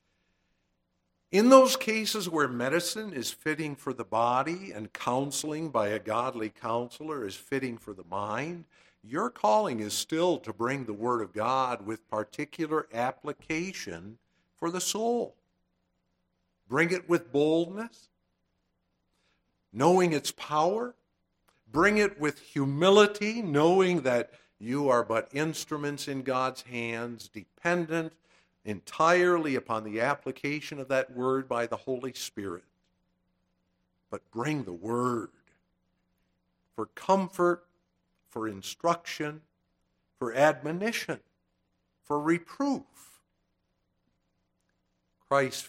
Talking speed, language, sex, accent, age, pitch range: 110 wpm, English, male, American, 60-79, 105-165 Hz